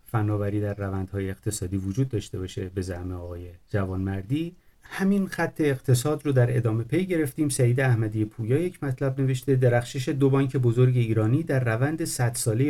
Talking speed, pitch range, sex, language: 155 wpm, 110-140 Hz, male, Persian